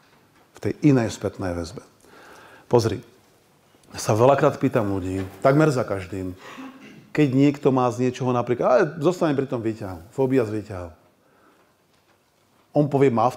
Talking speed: 140 wpm